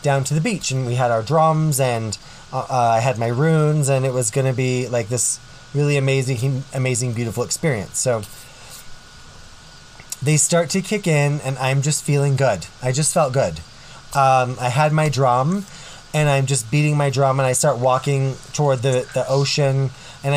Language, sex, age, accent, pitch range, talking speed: English, male, 20-39, American, 125-145 Hz, 185 wpm